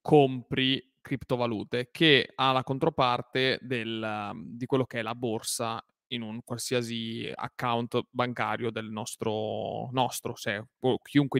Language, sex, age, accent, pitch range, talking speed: Italian, male, 30-49, native, 120-140 Hz, 120 wpm